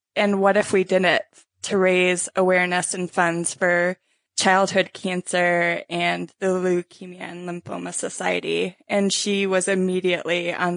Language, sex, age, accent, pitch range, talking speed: English, female, 20-39, American, 180-210 Hz, 140 wpm